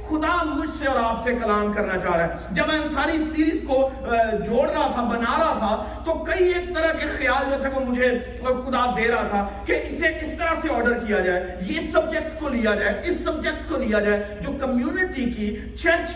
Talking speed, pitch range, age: 215 wpm, 215-310 Hz, 40-59